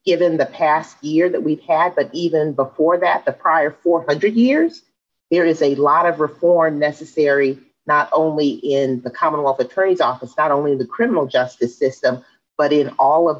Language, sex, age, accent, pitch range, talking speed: English, female, 40-59, American, 130-170 Hz, 180 wpm